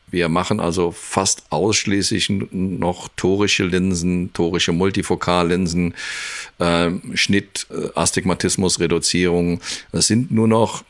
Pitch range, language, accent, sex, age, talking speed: 85-100 Hz, German, German, male, 50-69, 95 wpm